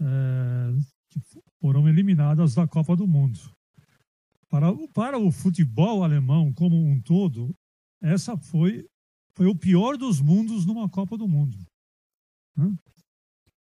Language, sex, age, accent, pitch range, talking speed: Portuguese, male, 60-79, Brazilian, 145-185 Hz, 115 wpm